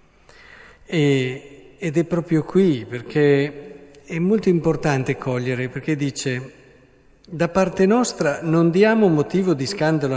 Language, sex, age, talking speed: Italian, male, 50-69, 110 wpm